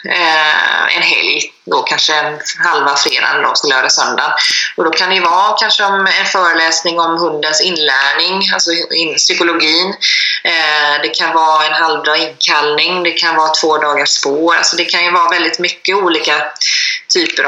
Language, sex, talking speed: Swedish, female, 165 wpm